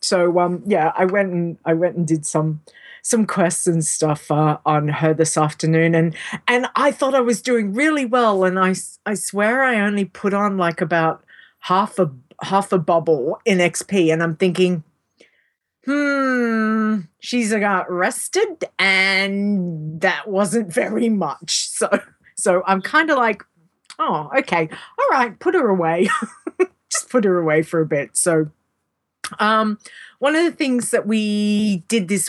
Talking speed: 165 wpm